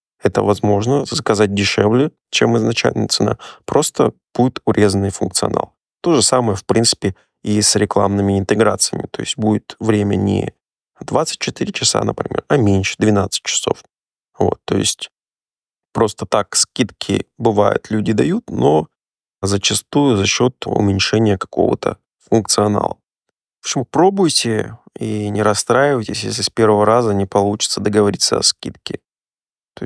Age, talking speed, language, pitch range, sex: 20-39, 125 wpm, Russian, 100-115 Hz, male